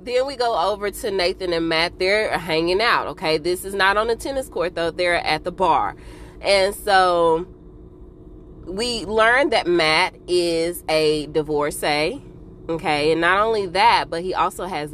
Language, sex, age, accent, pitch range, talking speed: English, female, 20-39, American, 160-195 Hz, 170 wpm